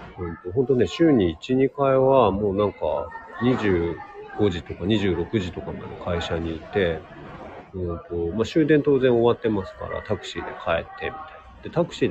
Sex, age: male, 40-59